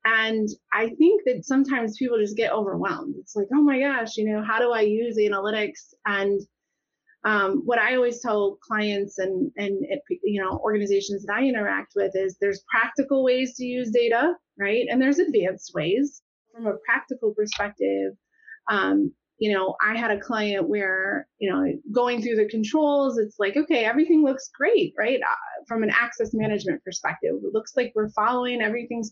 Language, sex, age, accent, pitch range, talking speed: English, female, 30-49, American, 210-270 Hz, 180 wpm